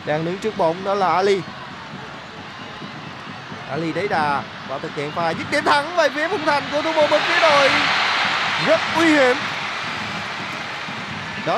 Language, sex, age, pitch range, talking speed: Vietnamese, male, 20-39, 180-220 Hz, 160 wpm